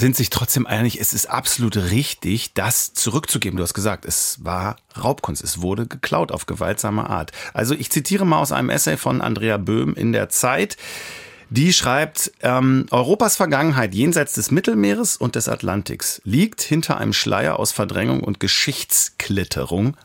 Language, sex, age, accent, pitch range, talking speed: German, male, 40-59, German, 100-135 Hz, 160 wpm